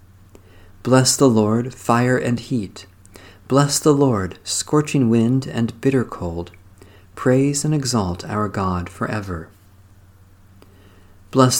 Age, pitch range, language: 50-69, 95-130 Hz, English